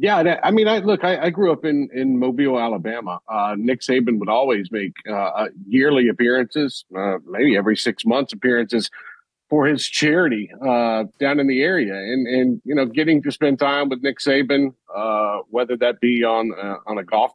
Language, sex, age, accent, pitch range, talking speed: English, male, 40-59, American, 125-165 Hz, 195 wpm